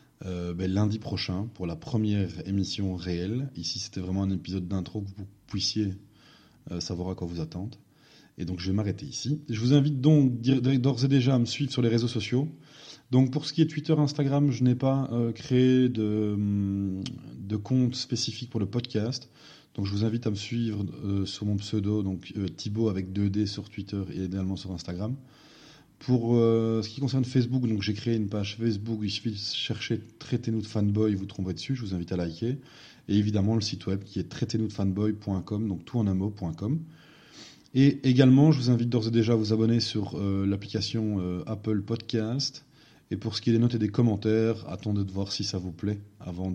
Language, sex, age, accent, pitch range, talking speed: French, male, 20-39, French, 100-125 Hz, 210 wpm